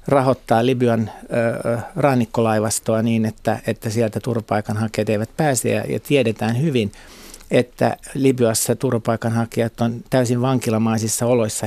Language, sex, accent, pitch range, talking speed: Finnish, male, native, 110-125 Hz, 110 wpm